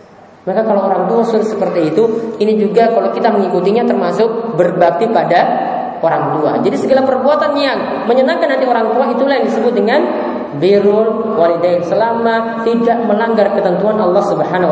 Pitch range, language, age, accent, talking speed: 200-255 Hz, Romanian, 20-39, Indonesian, 150 wpm